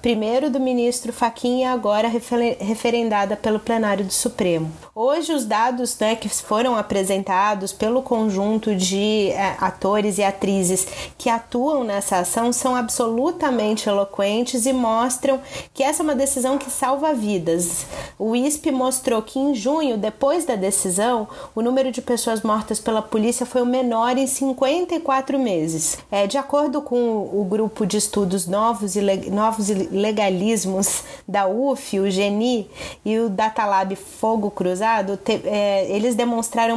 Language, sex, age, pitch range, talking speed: Portuguese, female, 30-49, 205-255 Hz, 145 wpm